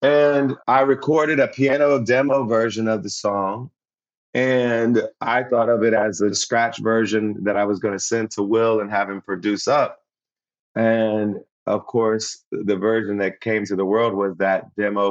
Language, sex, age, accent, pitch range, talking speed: English, male, 30-49, American, 105-130 Hz, 180 wpm